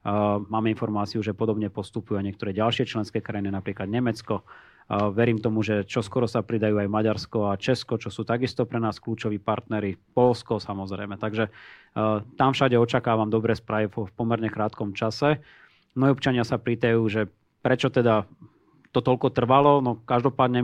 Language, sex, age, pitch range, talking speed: Slovak, male, 30-49, 110-125 Hz, 160 wpm